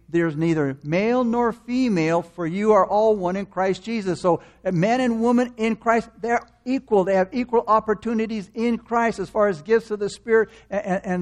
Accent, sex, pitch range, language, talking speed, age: American, male, 180-225 Hz, English, 200 wpm, 60-79